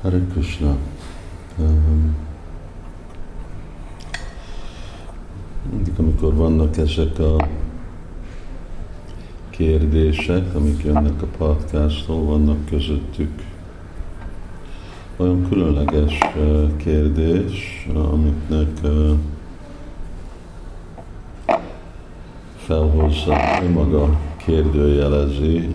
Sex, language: male, Hungarian